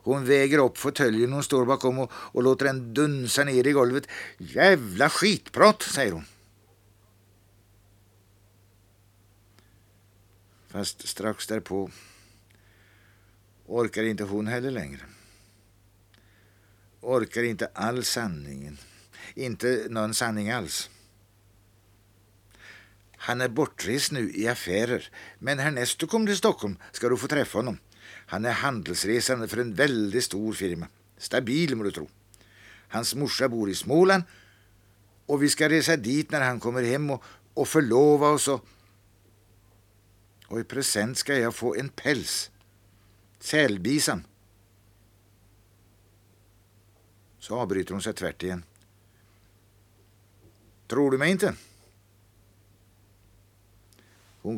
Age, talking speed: 60-79, 110 wpm